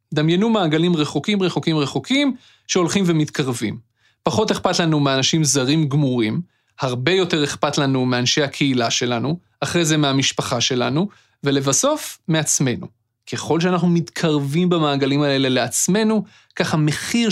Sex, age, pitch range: male, 30-49, 140-195 Hz